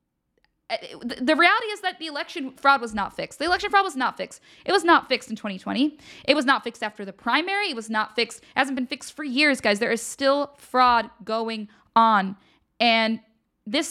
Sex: female